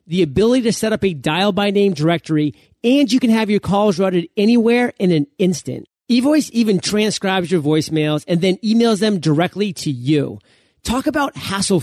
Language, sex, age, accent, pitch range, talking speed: English, male, 30-49, American, 160-225 Hz, 185 wpm